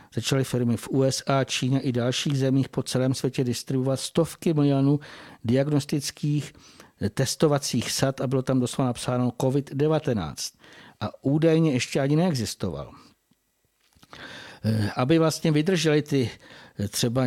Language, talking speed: Czech, 110 wpm